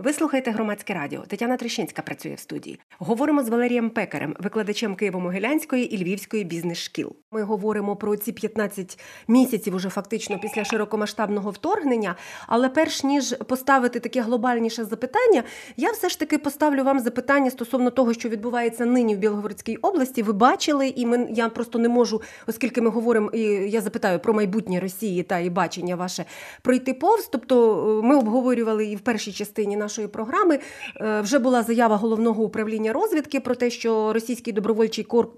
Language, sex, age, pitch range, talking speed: Ukrainian, female, 30-49, 210-260 Hz, 160 wpm